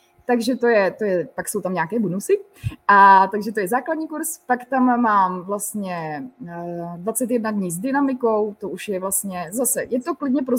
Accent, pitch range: native, 205-250 Hz